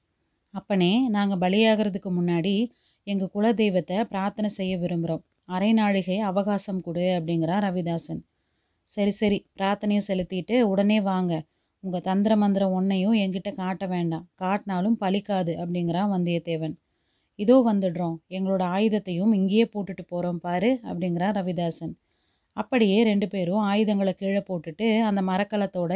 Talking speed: 110 wpm